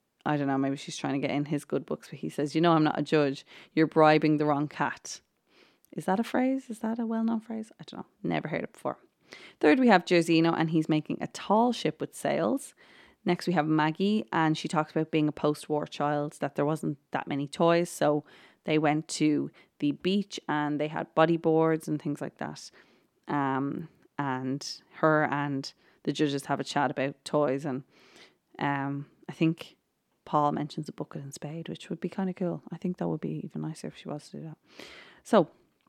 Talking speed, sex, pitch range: 210 wpm, female, 145-170 Hz